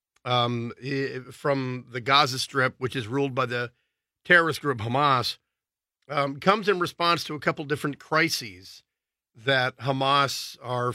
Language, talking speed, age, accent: English, 135 wpm, 40-59, American